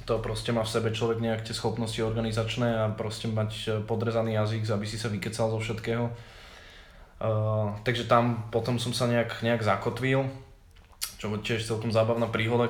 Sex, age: male, 20-39